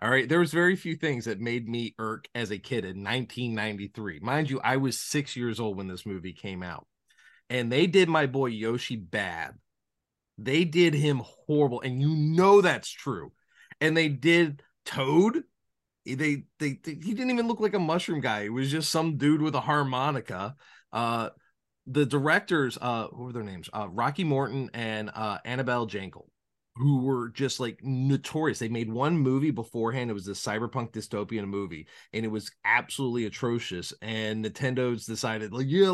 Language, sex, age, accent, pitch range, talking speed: English, male, 30-49, American, 105-145 Hz, 180 wpm